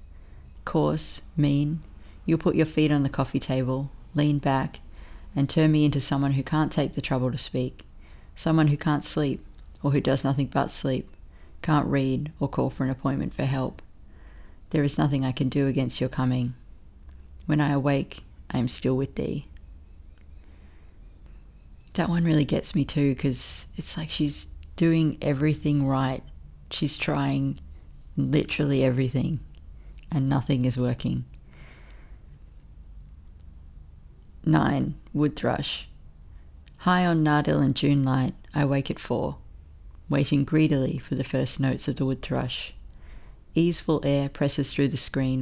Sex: female